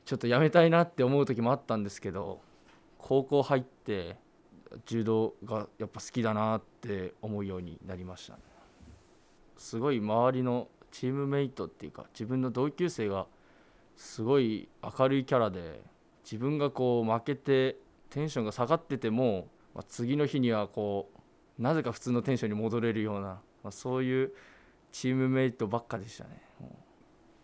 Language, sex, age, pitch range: Japanese, male, 20-39, 110-135 Hz